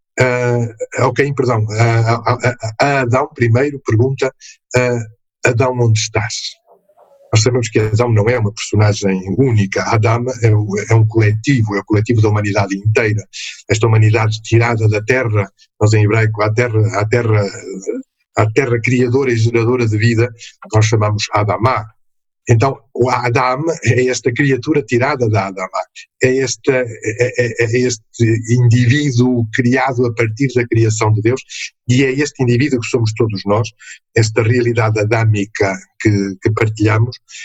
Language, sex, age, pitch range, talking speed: Portuguese, male, 50-69, 110-125 Hz, 150 wpm